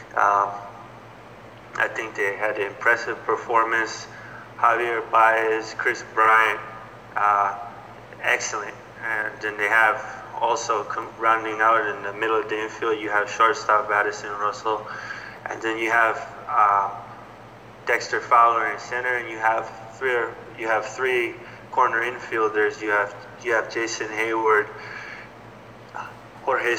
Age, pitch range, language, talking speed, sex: 20-39, 105-115 Hz, English, 130 wpm, male